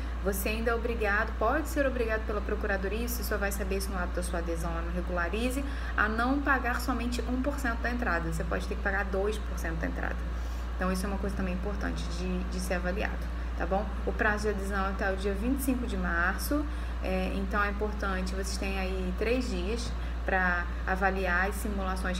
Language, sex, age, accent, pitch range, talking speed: Portuguese, female, 20-39, Brazilian, 170-220 Hz, 195 wpm